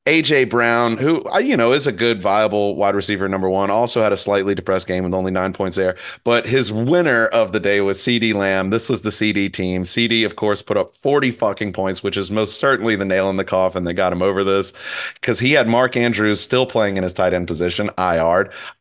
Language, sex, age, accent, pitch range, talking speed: English, male, 30-49, American, 95-120 Hz, 235 wpm